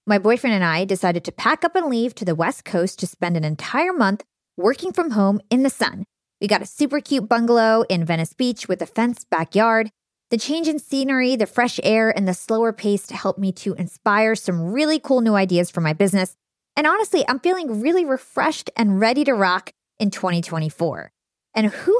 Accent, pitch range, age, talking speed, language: American, 190-255 Hz, 20-39, 205 wpm, English